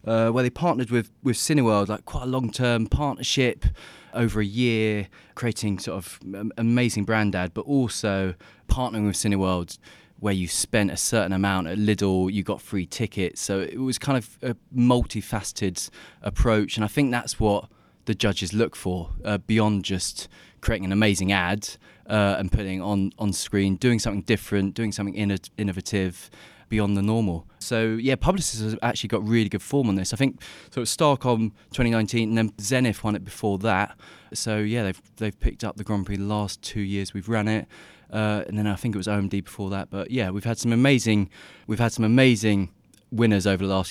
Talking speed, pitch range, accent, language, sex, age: 195 wpm, 100-115 Hz, British, English, male, 20-39